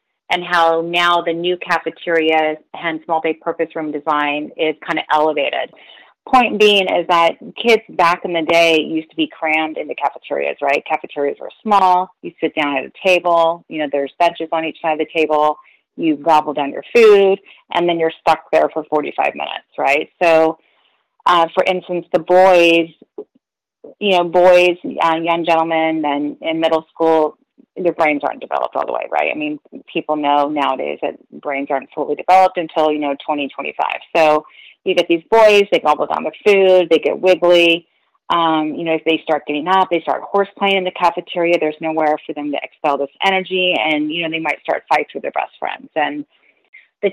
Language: English